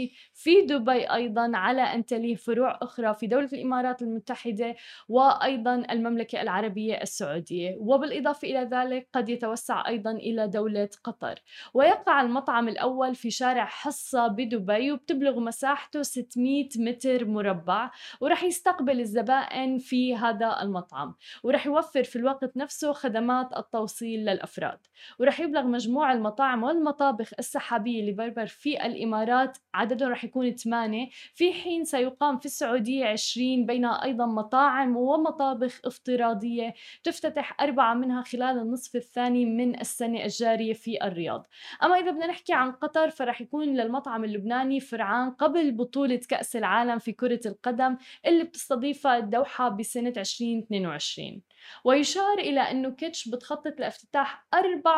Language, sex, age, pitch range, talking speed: Arabic, female, 10-29, 230-275 Hz, 125 wpm